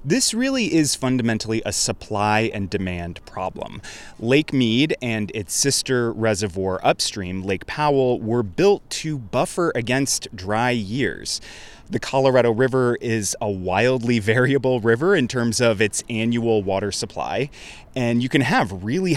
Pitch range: 110-140 Hz